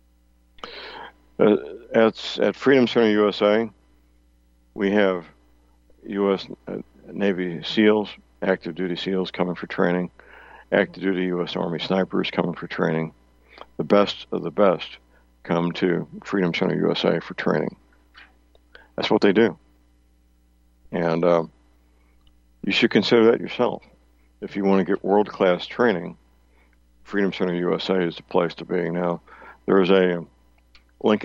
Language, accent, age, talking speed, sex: English, American, 60-79, 135 wpm, male